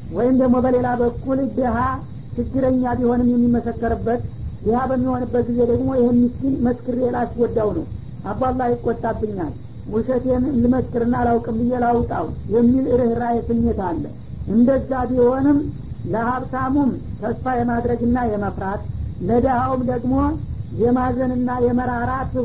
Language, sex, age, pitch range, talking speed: Amharic, female, 50-69, 240-255 Hz, 95 wpm